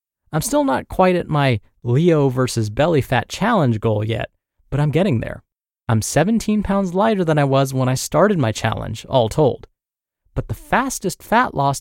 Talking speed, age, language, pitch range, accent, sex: 185 wpm, 20-39, English, 125-185 Hz, American, male